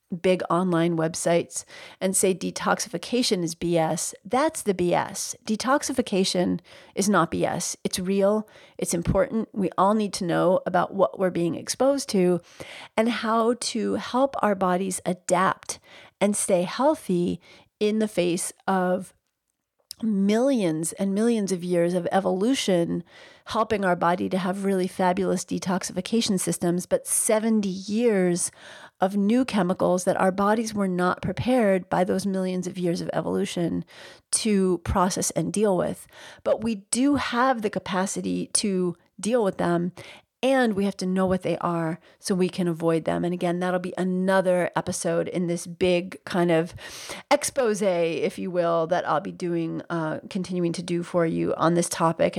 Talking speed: 155 wpm